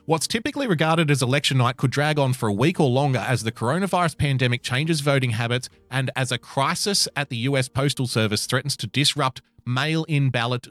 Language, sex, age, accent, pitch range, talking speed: English, male, 30-49, Australian, 120-160 Hz, 195 wpm